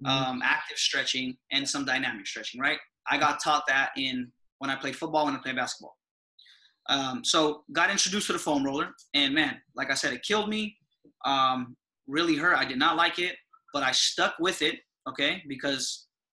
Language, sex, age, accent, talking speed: English, male, 20-39, American, 190 wpm